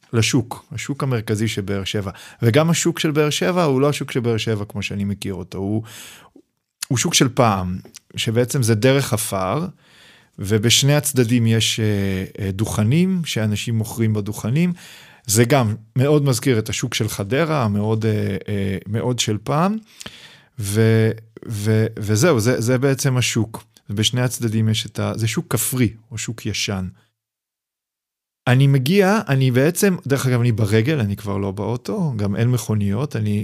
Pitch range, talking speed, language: 110-145 Hz, 145 wpm, Hebrew